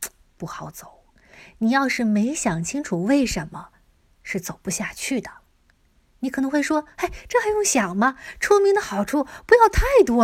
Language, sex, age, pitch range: Chinese, female, 20-39, 195-275 Hz